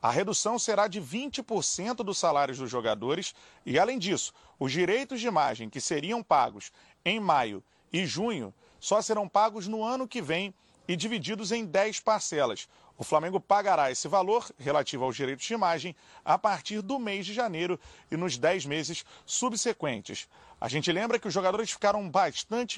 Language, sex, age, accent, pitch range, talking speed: Portuguese, male, 30-49, Brazilian, 165-220 Hz, 170 wpm